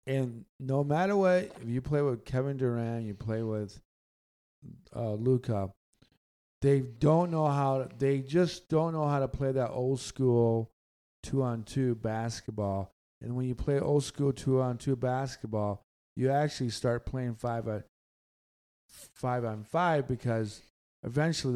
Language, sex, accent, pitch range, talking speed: English, male, American, 110-140 Hz, 155 wpm